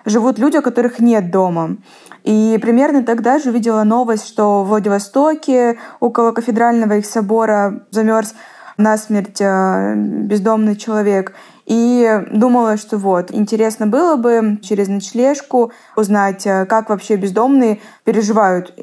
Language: Russian